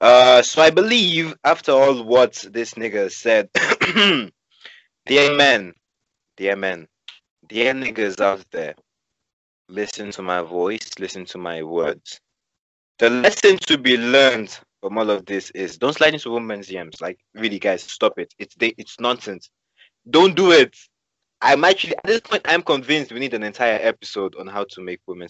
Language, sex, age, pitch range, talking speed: English, male, 20-39, 95-135 Hz, 165 wpm